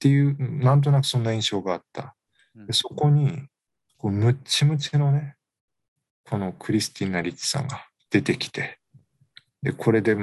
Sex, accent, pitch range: male, native, 105-140 Hz